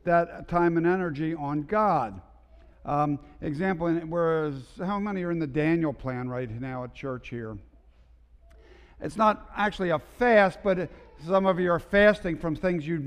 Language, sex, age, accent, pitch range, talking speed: English, male, 50-69, American, 130-170 Hz, 160 wpm